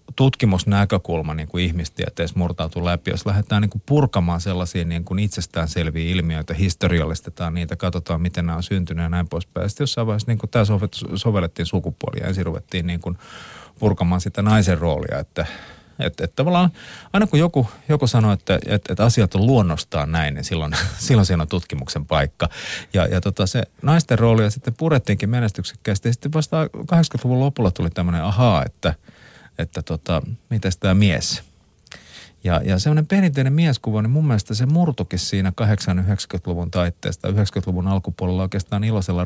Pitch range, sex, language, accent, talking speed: 85-115 Hz, male, Finnish, native, 155 wpm